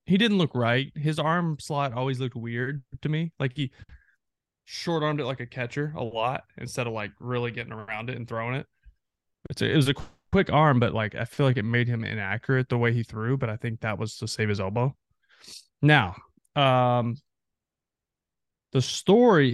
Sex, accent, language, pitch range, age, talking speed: male, American, English, 115-140 Hz, 20-39, 190 wpm